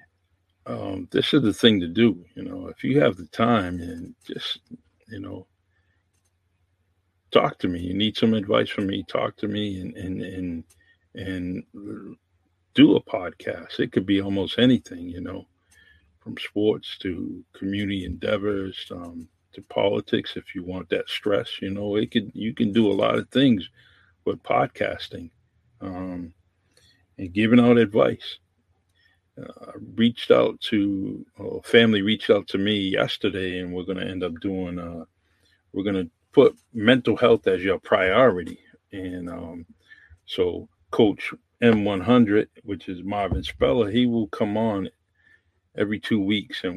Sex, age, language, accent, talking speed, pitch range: male, 50-69, English, American, 155 wpm, 90-105 Hz